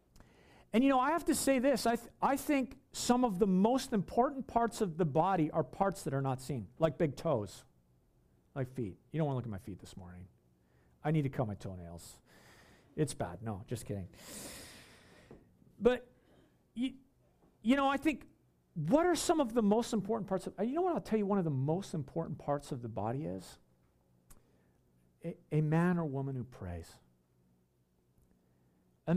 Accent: American